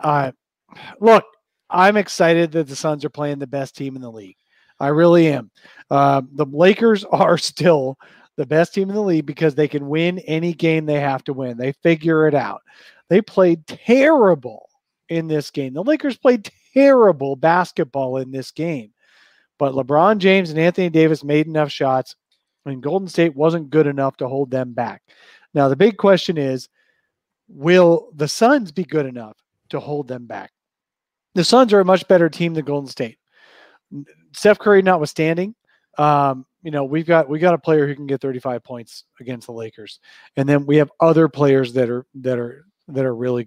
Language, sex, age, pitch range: English, male, 40-59, 135-175 Hz